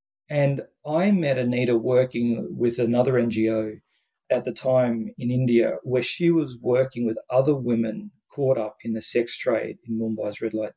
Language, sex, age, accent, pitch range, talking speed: English, male, 40-59, Australian, 120-150 Hz, 165 wpm